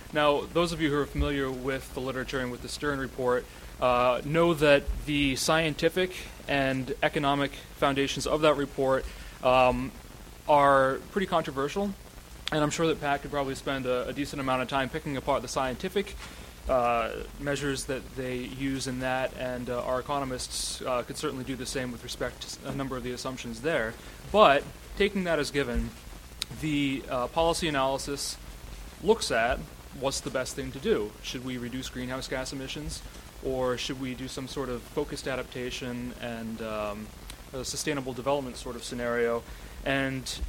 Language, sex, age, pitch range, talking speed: English, male, 30-49, 120-145 Hz, 170 wpm